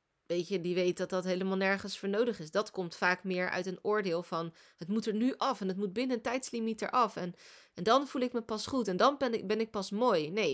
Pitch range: 180-225 Hz